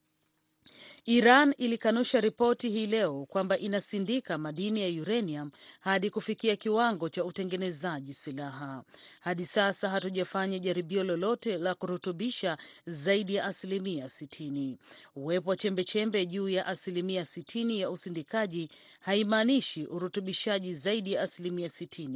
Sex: female